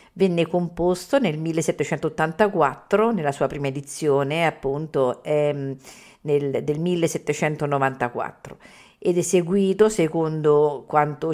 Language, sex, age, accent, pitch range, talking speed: Italian, female, 50-69, native, 150-190 Hz, 90 wpm